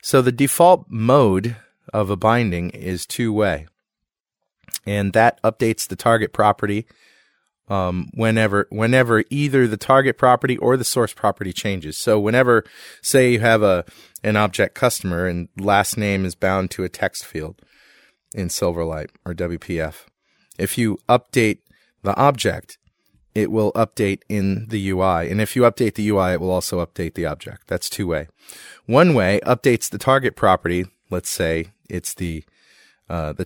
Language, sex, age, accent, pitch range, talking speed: English, male, 30-49, American, 90-120 Hz, 150 wpm